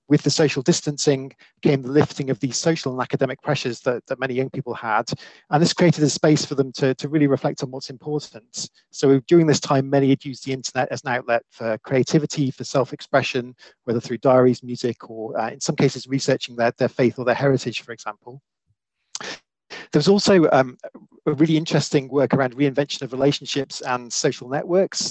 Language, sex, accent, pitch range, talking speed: English, male, British, 125-145 Hz, 195 wpm